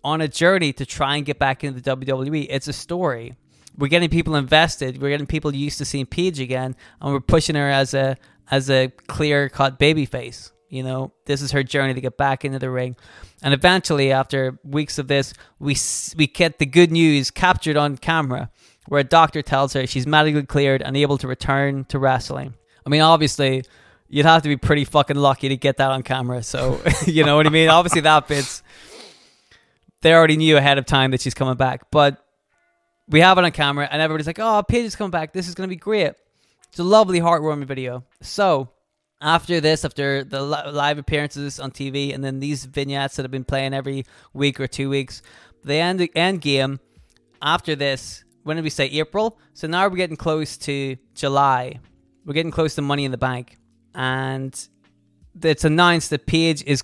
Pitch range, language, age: 135-155 Hz, English, 20-39